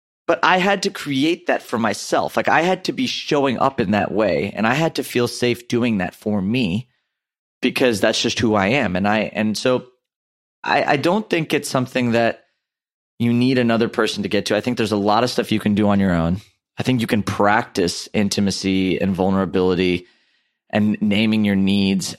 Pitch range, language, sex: 95-120 Hz, English, male